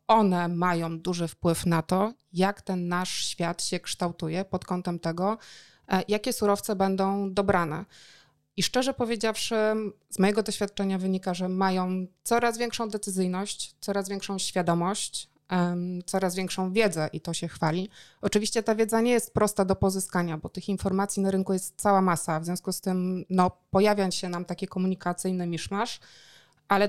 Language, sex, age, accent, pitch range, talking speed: Polish, female, 20-39, native, 180-205 Hz, 155 wpm